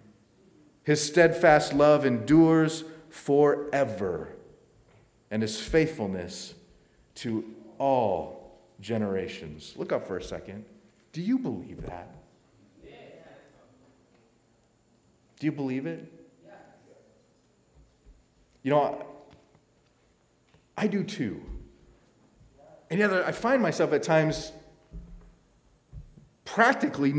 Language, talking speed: English, 85 wpm